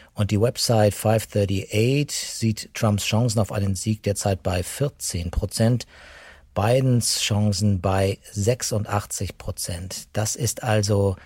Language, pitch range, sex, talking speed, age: German, 95-115 Hz, male, 115 wpm, 50-69